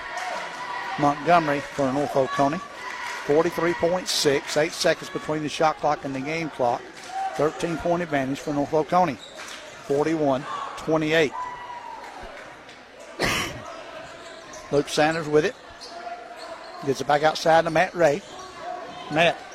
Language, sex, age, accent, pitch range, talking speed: English, male, 60-79, American, 150-195 Hz, 100 wpm